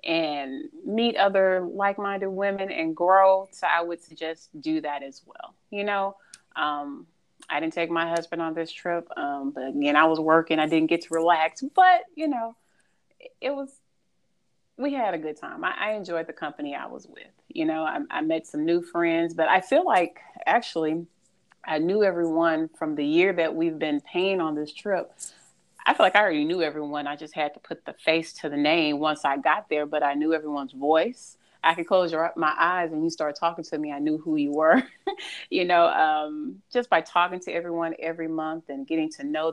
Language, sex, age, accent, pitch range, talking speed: English, female, 30-49, American, 155-190 Hz, 210 wpm